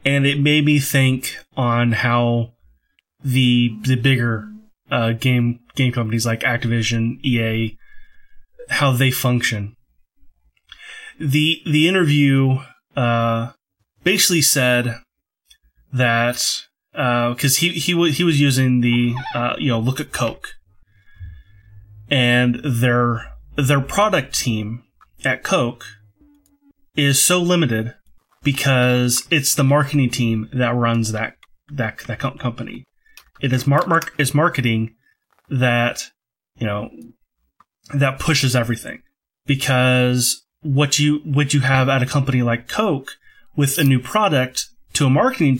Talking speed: 120 wpm